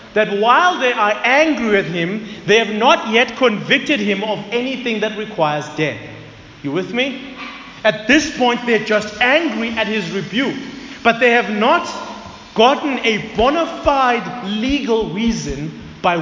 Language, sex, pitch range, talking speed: English, male, 180-245 Hz, 155 wpm